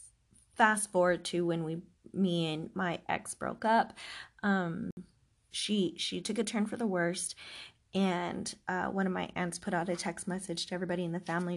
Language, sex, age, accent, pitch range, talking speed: English, female, 20-39, American, 170-200 Hz, 185 wpm